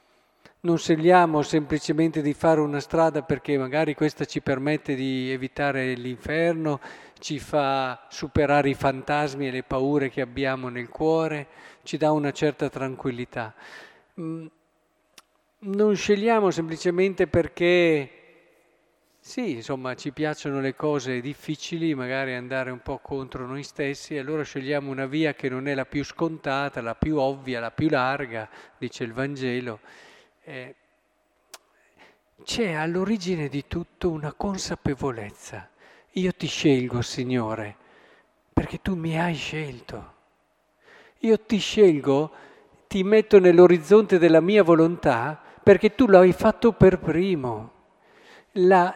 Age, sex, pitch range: 50-69, male, 135-180 Hz